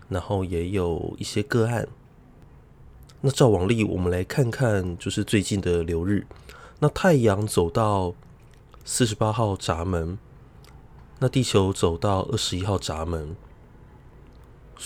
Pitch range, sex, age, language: 100-130 Hz, male, 20-39, Chinese